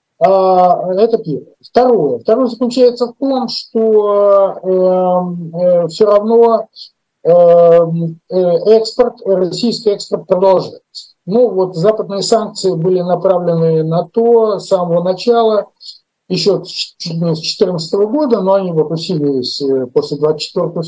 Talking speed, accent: 100 wpm, native